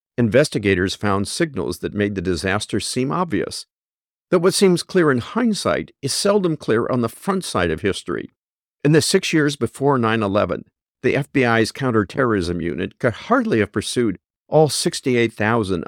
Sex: male